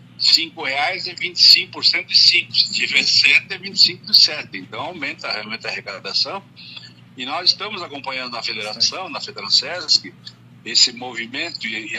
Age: 60-79